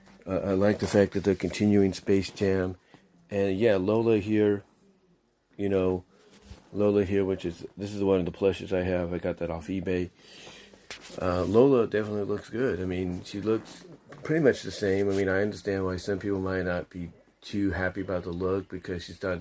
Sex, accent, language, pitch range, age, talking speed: male, American, English, 95-105 Hz, 40-59, 200 wpm